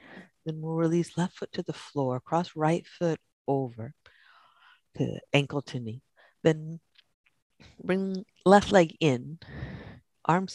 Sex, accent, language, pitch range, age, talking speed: female, American, English, 130-180 Hz, 50-69, 125 wpm